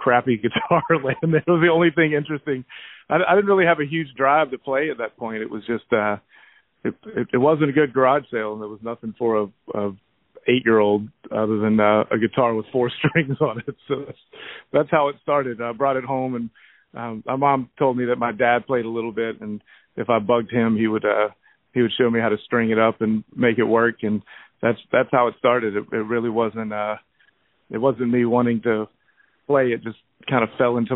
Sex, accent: male, American